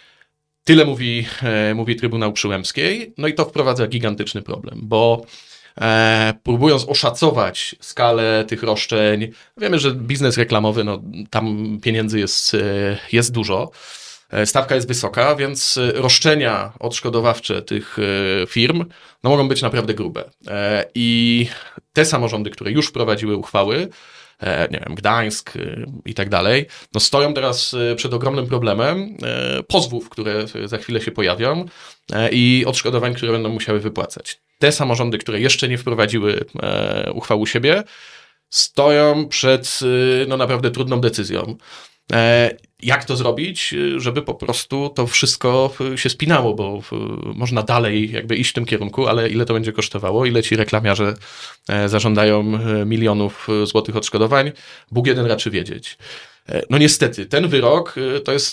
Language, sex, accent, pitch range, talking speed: Polish, male, native, 110-130 Hz, 130 wpm